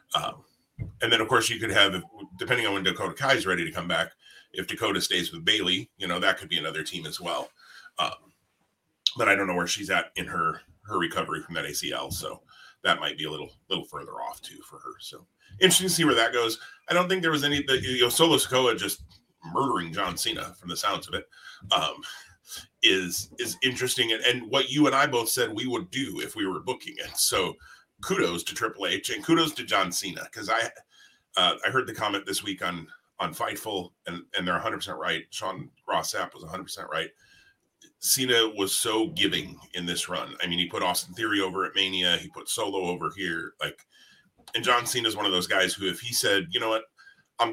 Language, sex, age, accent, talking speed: English, male, 30-49, American, 220 wpm